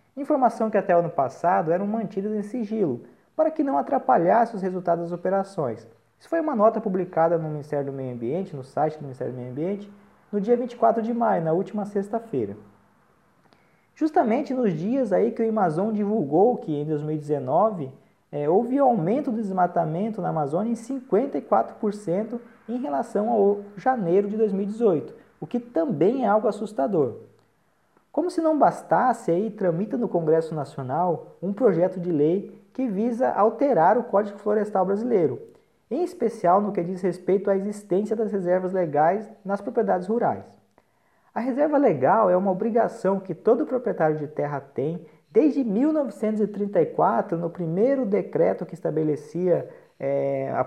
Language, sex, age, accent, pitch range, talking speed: Portuguese, male, 20-39, Brazilian, 170-225 Hz, 150 wpm